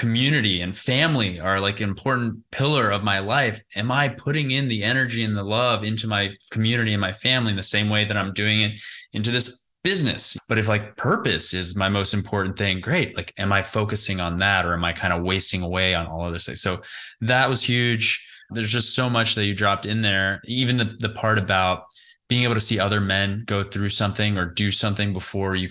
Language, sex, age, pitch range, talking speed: English, male, 20-39, 100-120 Hz, 225 wpm